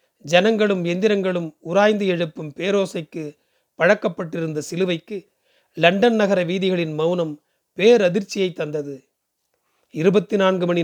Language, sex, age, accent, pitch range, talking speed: Tamil, male, 30-49, native, 170-210 Hz, 85 wpm